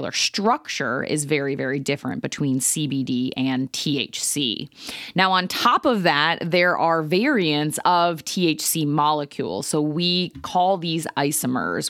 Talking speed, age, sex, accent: 125 wpm, 20-39, female, American